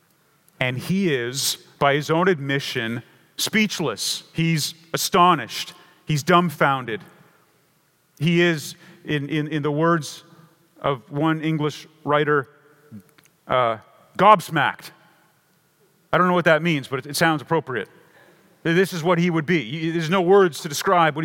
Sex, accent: male, American